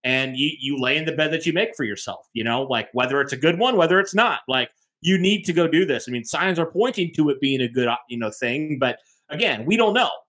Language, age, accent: English, 30-49, American